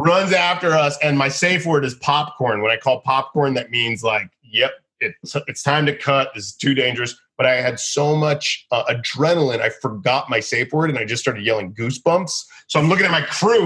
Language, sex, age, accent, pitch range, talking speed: English, male, 30-49, American, 135-195 Hz, 220 wpm